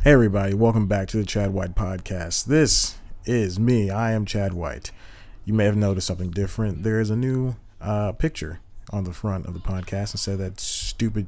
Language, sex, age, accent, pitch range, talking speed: English, male, 30-49, American, 90-115 Hz, 200 wpm